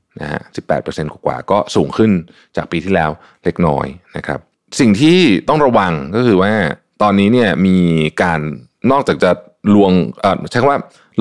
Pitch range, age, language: 80-100 Hz, 20-39, Thai